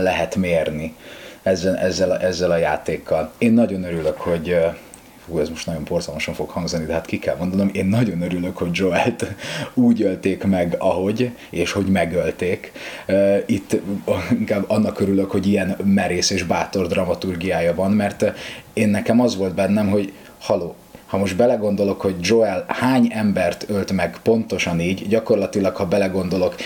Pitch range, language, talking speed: 95-115 Hz, Hungarian, 155 wpm